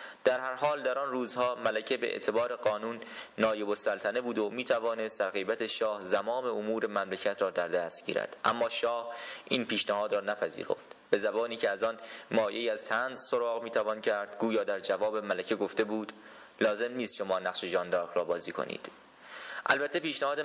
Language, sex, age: Persian, male, 20-39